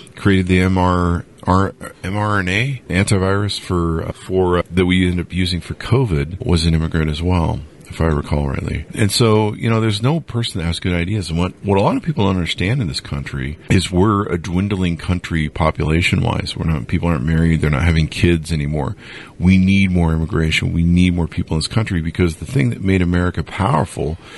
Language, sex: English, male